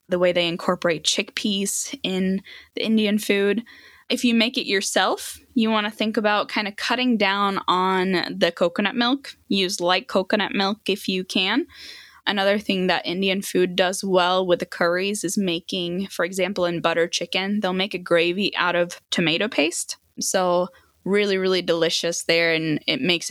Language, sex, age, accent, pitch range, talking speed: English, female, 10-29, American, 170-210 Hz, 170 wpm